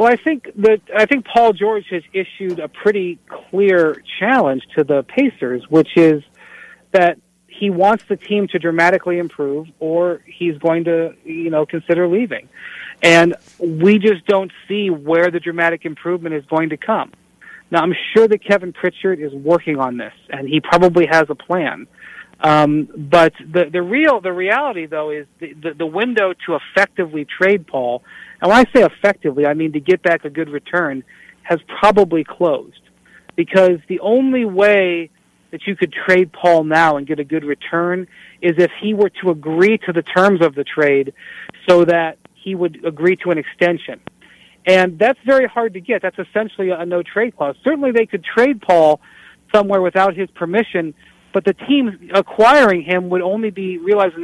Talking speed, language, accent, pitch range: 180 wpm, English, American, 165-200 Hz